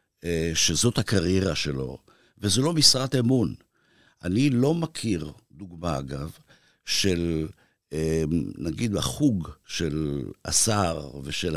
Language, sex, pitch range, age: Hebrew, male, 85-125 Hz, 60-79